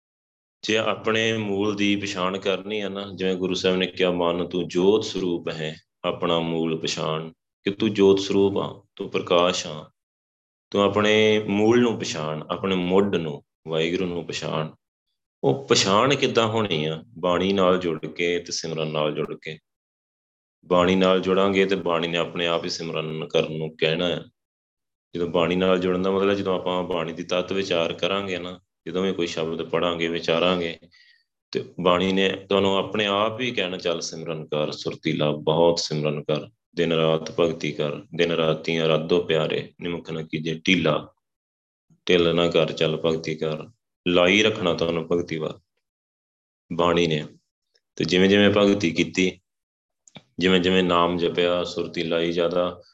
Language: Punjabi